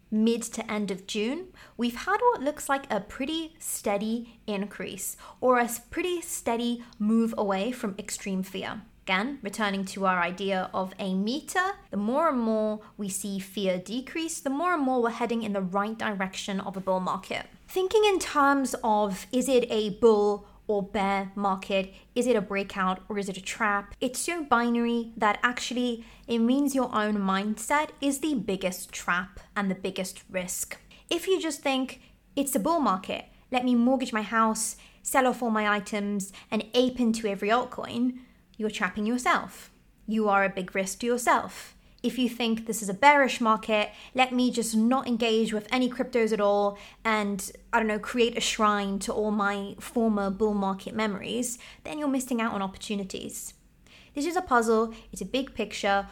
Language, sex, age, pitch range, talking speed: English, female, 20-39, 200-250 Hz, 185 wpm